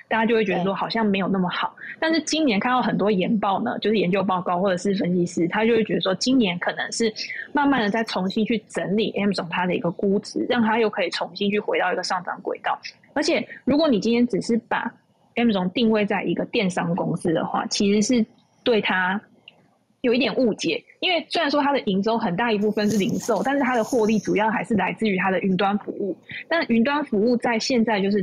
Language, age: Chinese, 20-39